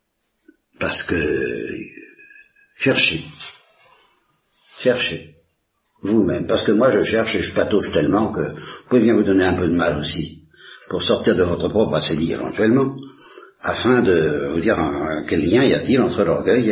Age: 60-79